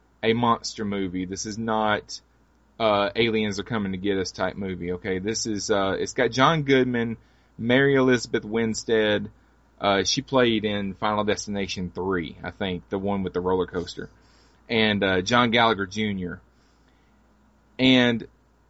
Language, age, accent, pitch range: English, 30-49, American, 100-125 Hz